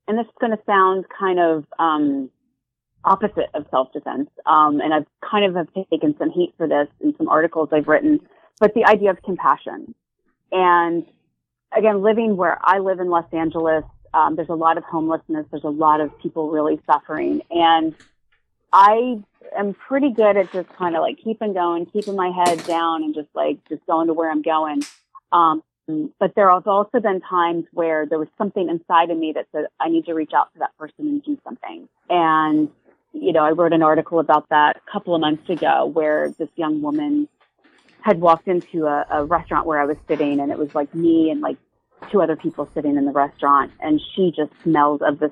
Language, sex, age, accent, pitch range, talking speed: English, female, 30-49, American, 155-195 Hz, 205 wpm